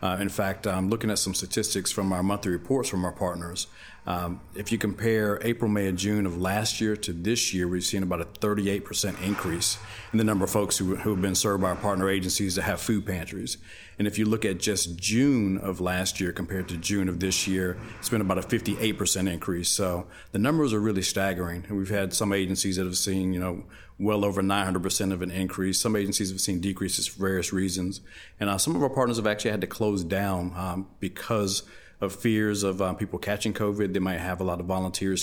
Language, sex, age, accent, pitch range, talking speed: English, male, 40-59, American, 95-105 Hz, 230 wpm